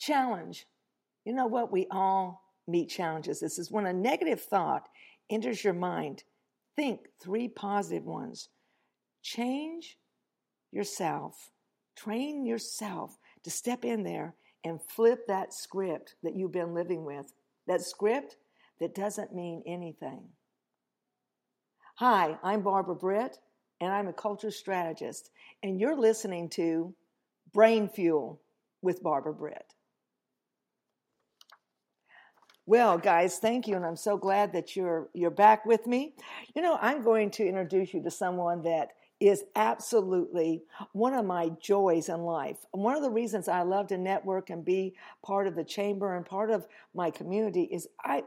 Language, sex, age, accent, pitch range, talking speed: English, female, 50-69, American, 180-235 Hz, 145 wpm